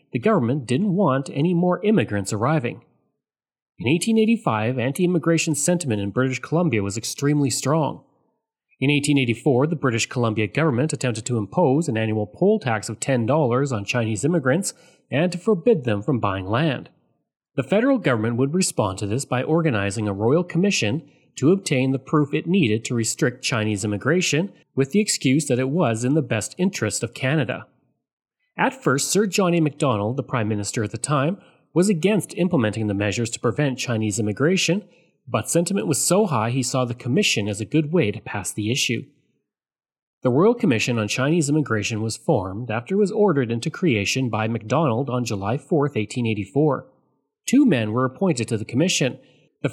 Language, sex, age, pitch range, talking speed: English, male, 30-49, 115-170 Hz, 170 wpm